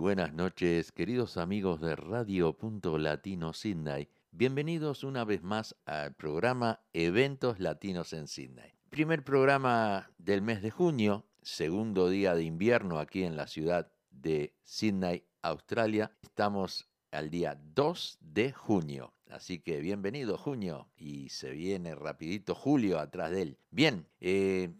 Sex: male